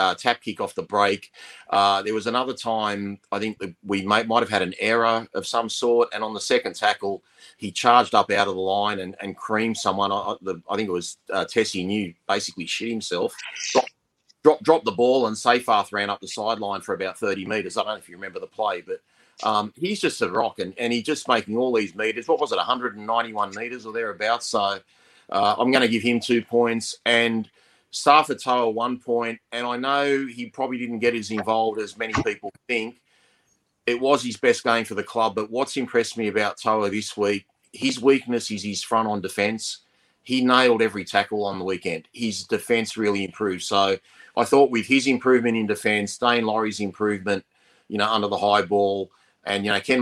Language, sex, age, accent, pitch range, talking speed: English, male, 30-49, Australian, 100-120 Hz, 210 wpm